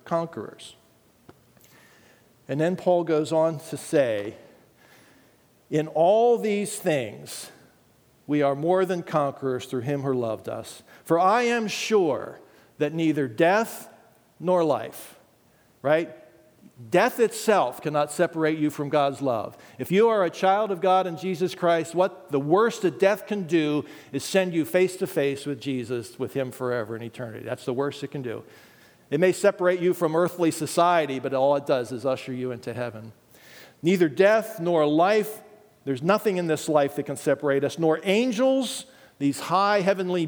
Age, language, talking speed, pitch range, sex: 50-69, English, 165 wpm, 140-195 Hz, male